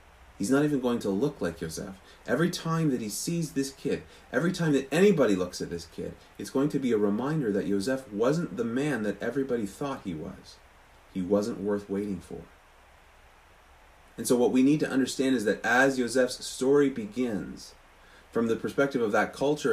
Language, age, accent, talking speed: English, 30-49, American, 190 wpm